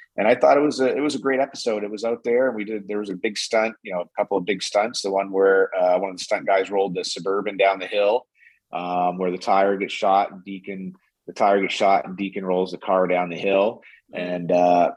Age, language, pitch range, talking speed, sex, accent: 30-49, English, 95-110 Hz, 265 wpm, male, American